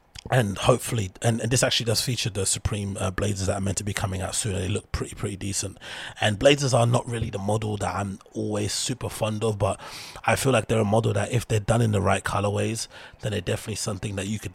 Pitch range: 100-115 Hz